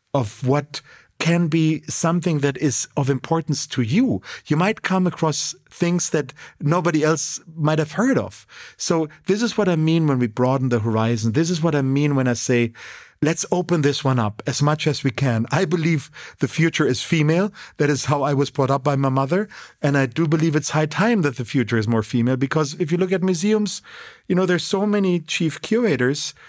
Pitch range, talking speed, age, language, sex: 120-160 Hz, 215 wpm, 40-59, English, male